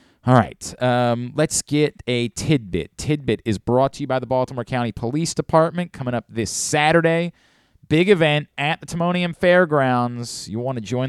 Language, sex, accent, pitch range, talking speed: English, male, American, 120-165 Hz, 175 wpm